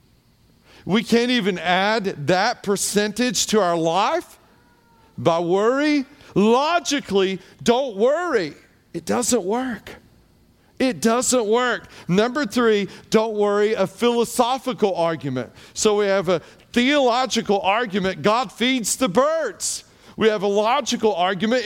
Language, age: English, 40-59